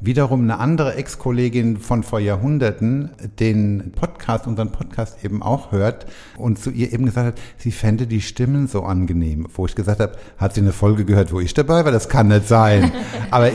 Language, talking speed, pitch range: German, 195 wpm, 100-130 Hz